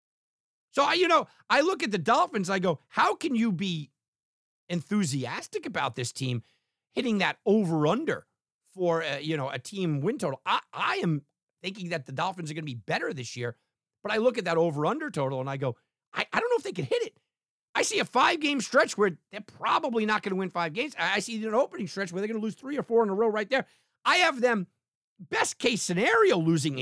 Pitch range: 135-210 Hz